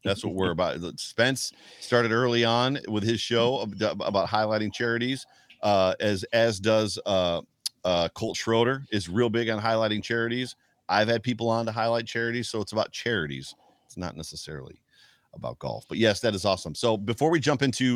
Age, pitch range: 50-69, 100-125 Hz